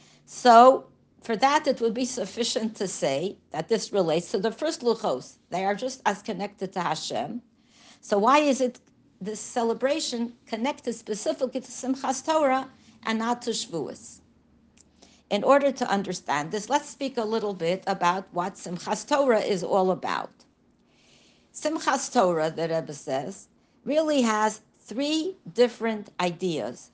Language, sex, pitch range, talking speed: English, female, 185-255 Hz, 145 wpm